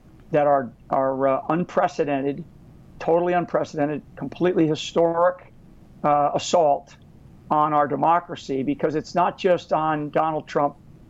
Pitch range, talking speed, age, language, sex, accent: 145-185 Hz, 115 wpm, 60-79, English, male, American